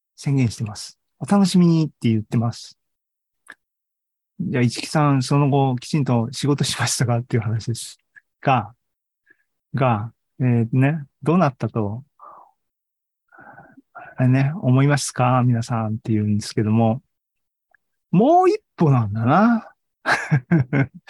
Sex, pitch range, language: male, 120-155 Hz, Japanese